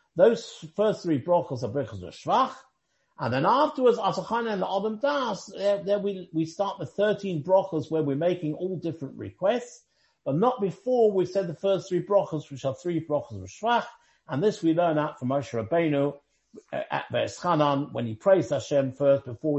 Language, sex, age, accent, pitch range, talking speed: English, male, 50-69, British, 150-205 Hz, 185 wpm